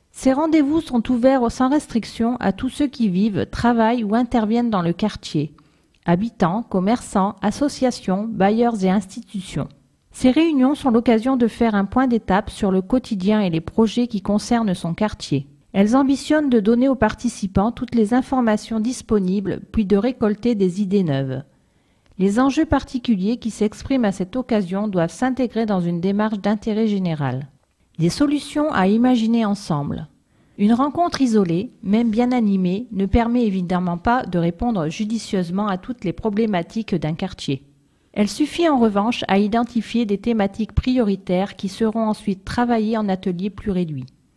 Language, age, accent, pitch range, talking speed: French, 40-59, French, 190-240 Hz, 155 wpm